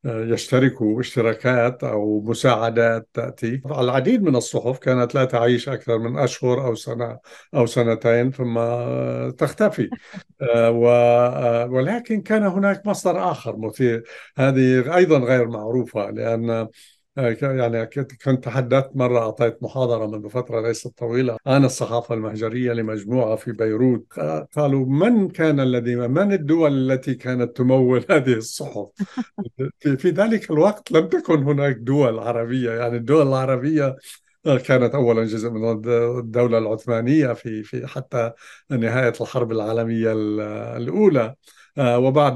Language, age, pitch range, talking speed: Arabic, 60-79, 115-145 Hz, 120 wpm